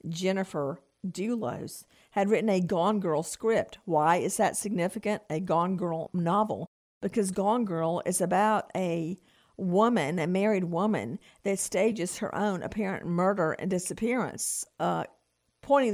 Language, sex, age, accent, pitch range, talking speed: English, female, 50-69, American, 175-215 Hz, 135 wpm